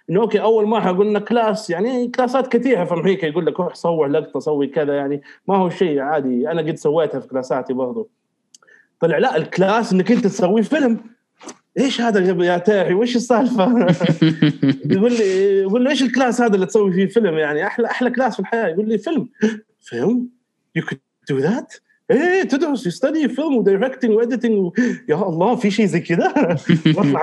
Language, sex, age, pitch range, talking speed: Arabic, male, 30-49, 155-230 Hz, 170 wpm